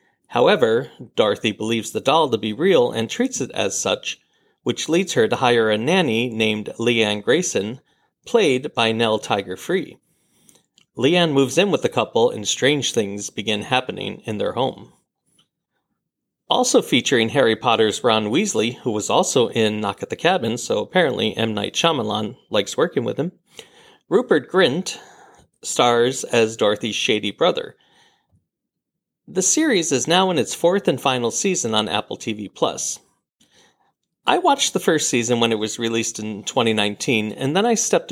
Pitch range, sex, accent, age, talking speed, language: 110-175 Hz, male, American, 40-59, 155 wpm, English